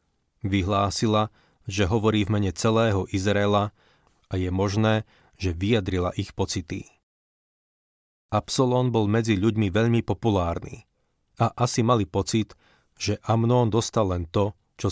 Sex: male